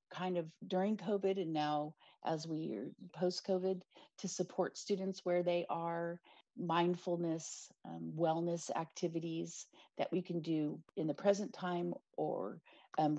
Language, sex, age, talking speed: English, female, 40-59, 135 wpm